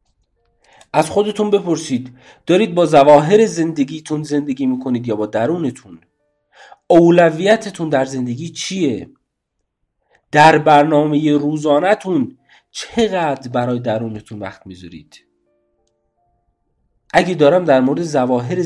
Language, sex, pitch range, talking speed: Persian, male, 115-150 Hz, 95 wpm